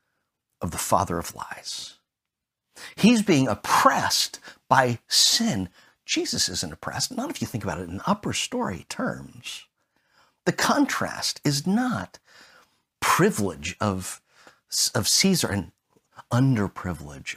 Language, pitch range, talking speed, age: English, 90-125 Hz, 115 wpm, 50-69